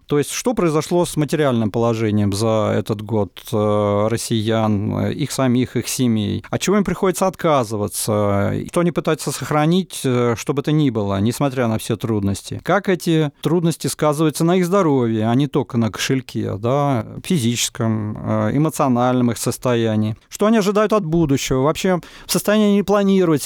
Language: Russian